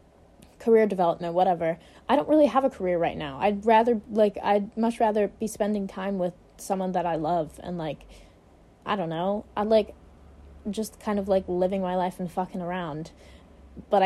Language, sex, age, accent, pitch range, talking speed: English, female, 20-39, American, 180-210 Hz, 190 wpm